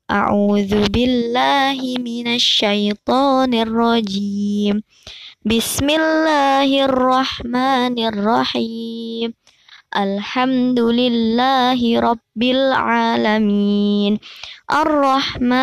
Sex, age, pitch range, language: male, 20-39, 210-255 Hz, Indonesian